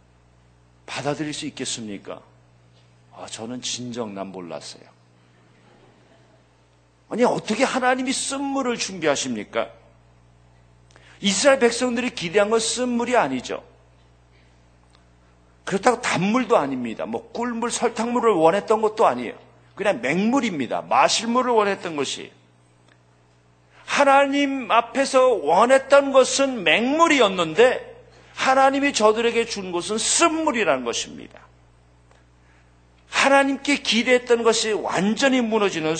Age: 50-69